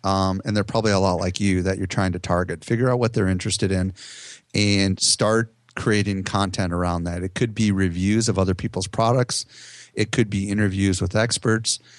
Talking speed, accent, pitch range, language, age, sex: 195 wpm, American, 95-115 Hz, English, 30-49, male